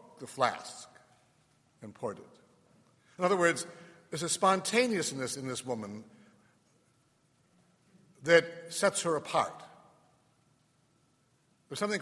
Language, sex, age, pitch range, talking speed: English, male, 60-79, 125-170 Hz, 100 wpm